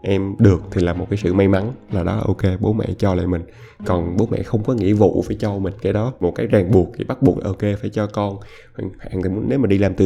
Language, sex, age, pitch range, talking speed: Vietnamese, male, 20-39, 95-115 Hz, 270 wpm